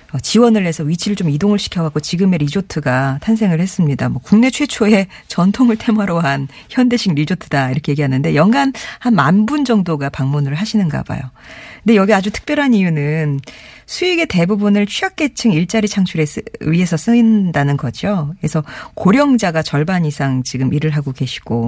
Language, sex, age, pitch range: Korean, female, 40-59, 145-220 Hz